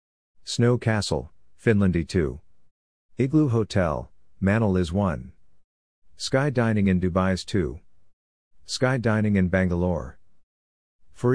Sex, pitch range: male, 80-100 Hz